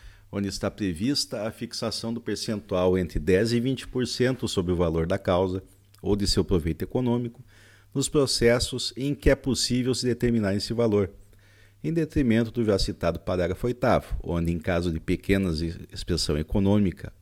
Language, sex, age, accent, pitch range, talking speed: Portuguese, male, 50-69, Brazilian, 95-120 Hz, 155 wpm